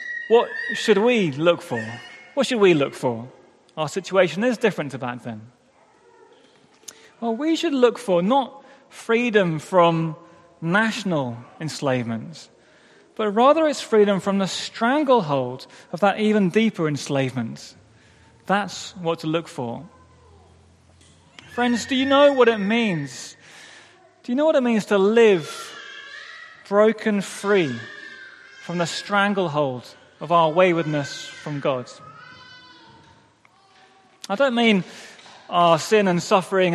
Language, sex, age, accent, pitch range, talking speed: English, male, 20-39, British, 155-230 Hz, 125 wpm